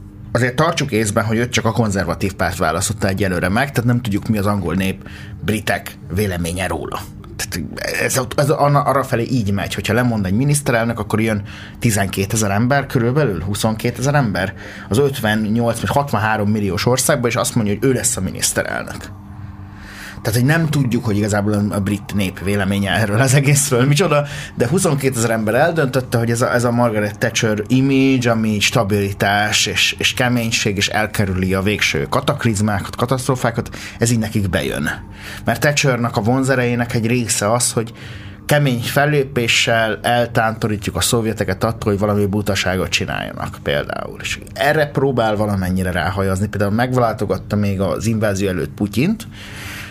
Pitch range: 100-120 Hz